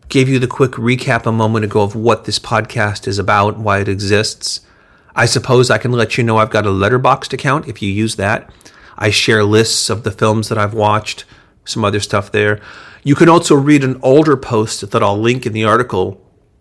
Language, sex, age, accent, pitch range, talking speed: English, male, 40-59, American, 110-145 Hz, 210 wpm